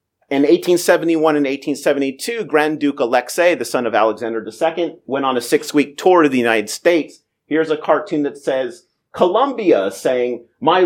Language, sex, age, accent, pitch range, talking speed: English, male, 40-59, American, 120-170 Hz, 160 wpm